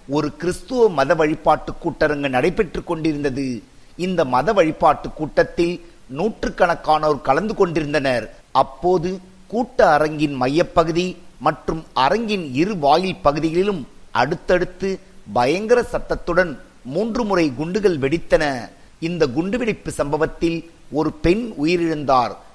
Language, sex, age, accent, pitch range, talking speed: Tamil, male, 50-69, native, 150-185 Hz, 100 wpm